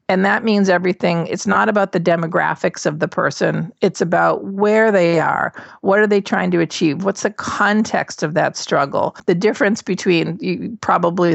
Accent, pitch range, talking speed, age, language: American, 160-195 Hz, 175 wpm, 40-59, English